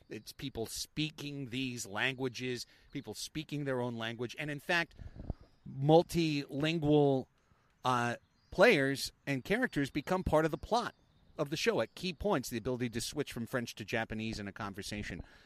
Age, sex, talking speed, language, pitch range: 30-49, male, 155 wpm, English, 110-155 Hz